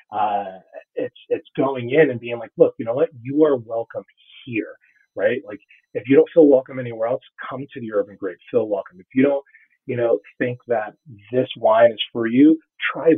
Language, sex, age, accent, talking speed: English, male, 30-49, American, 205 wpm